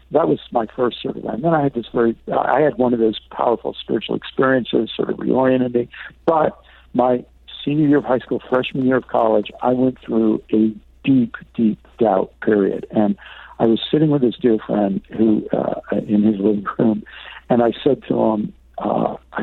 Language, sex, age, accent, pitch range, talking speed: English, male, 60-79, American, 105-130 Hz, 195 wpm